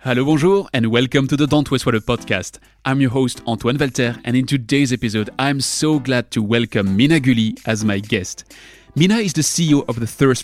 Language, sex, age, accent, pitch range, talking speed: English, male, 30-49, French, 115-145 Hz, 200 wpm